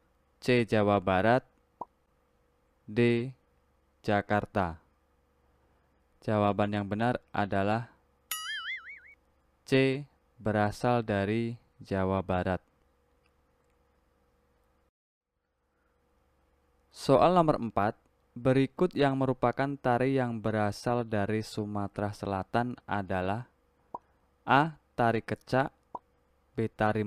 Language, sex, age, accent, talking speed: Indonesian, male, 20-39, native, 70 wpm